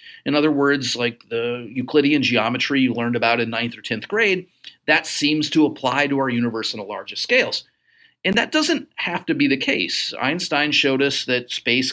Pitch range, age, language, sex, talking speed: 120-165 Hz, 40-59, English, male, 195 wpm